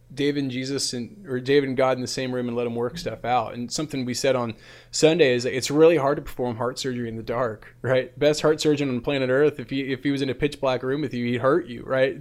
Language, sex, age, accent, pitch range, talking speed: English, male, 20-39, American, 120-145 Hz, 285 wpm